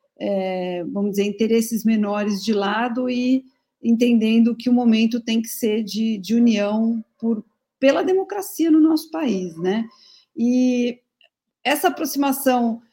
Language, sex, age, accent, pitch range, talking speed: Portuguese, female, 50-69, Brazilian, 200-245 Hz, 130 wpm